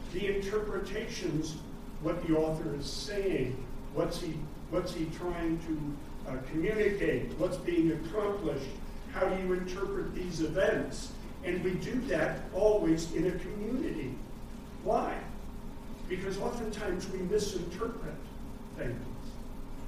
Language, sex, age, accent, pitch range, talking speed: English, male, 50-69, American, 150-195 Hz, 110 wpm